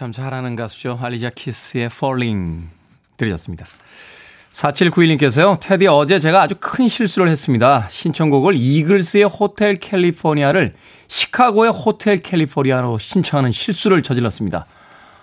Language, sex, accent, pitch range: Korean, male, native, 130-195 Hz